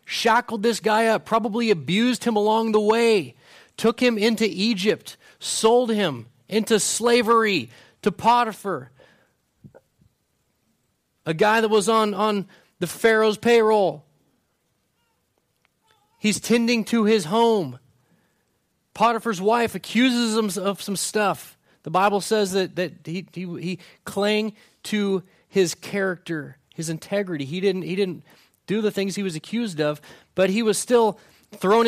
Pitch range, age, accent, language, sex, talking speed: 180-230 Hz, 30-49, American, English, male, 135 wpm